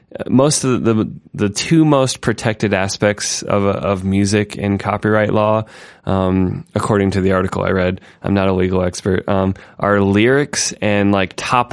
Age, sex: 20-39, male